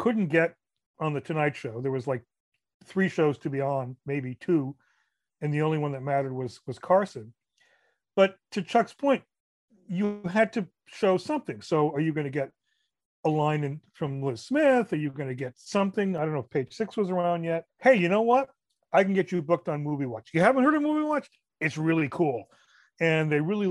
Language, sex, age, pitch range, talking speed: English, male, 40-59, 145-210 Hz, 215 wpm